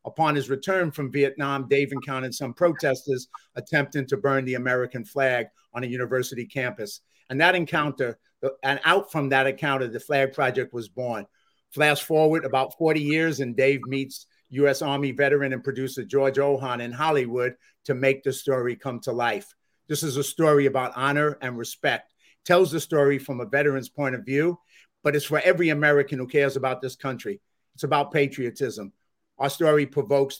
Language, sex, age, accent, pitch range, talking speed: English, male, 50-69, American, 130-150 Hz, 175 wpm